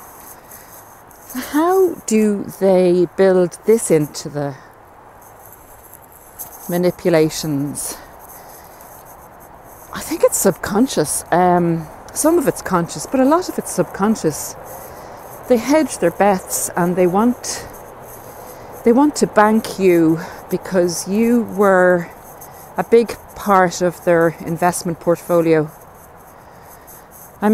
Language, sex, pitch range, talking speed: English, female, 170-215 Hz, 100 wpm